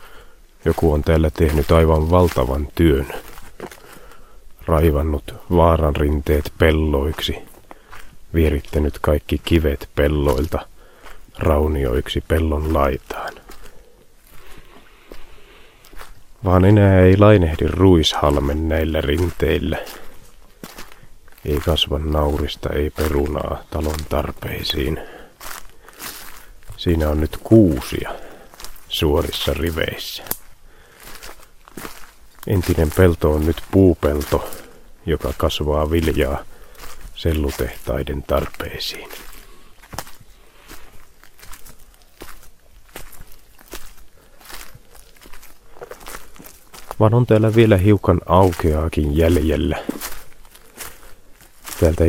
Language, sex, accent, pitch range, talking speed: Finnish, male, native, 75-90 Hz, 65 wpm